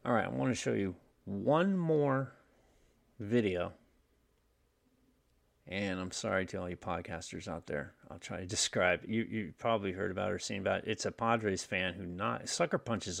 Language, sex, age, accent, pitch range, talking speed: English, male, 30-49, American, 95-120 Hz, 185 wpm